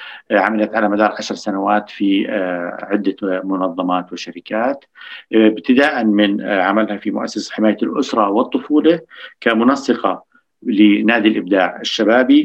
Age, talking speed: 50-69, 100 wpm